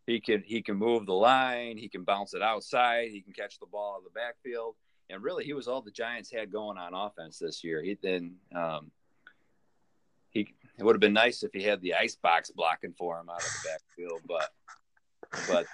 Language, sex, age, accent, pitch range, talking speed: English, male, 40-59, American, 95-115 Hz, 215 wpm